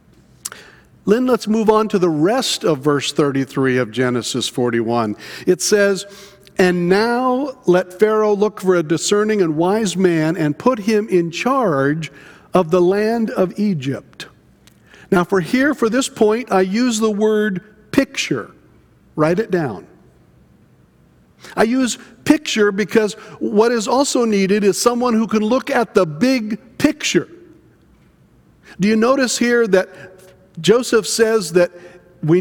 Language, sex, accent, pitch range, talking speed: English, male, American, 170-225 Hz, 140 wpm